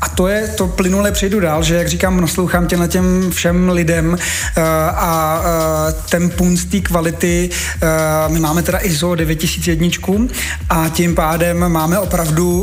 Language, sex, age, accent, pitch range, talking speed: Czech, male, 30-49, native, 165-185 Hz, 160 wpm